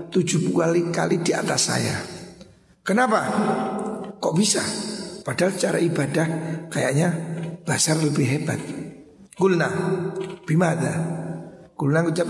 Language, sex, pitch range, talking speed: Indonesian, male, 155-195 Hz, 95 wpm